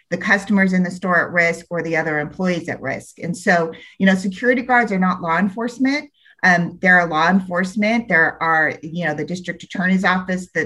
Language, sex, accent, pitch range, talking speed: English, female, American, 170-205 Hz, 210 wpm